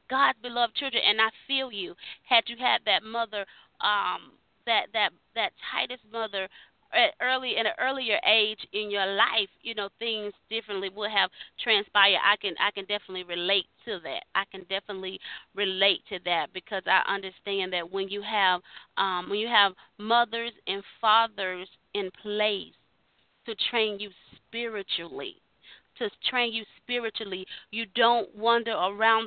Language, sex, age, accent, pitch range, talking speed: English, female, 30-49, American, 195-230 Hz, 155 wpm